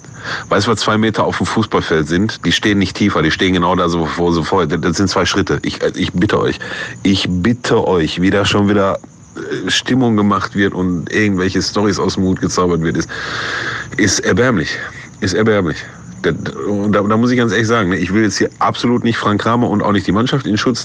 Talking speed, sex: 220 wpm, male